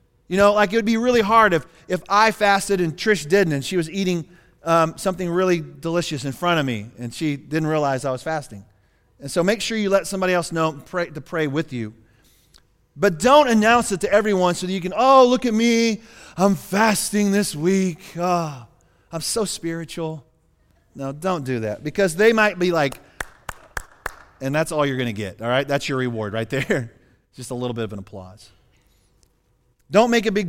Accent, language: American, English